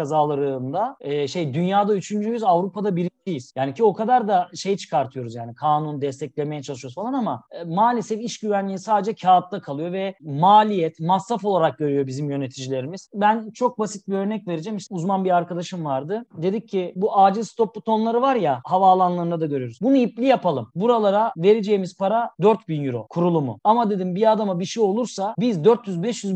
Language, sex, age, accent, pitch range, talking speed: Turkish, male, 40-59, native, 165-215 Hz, 170 wpm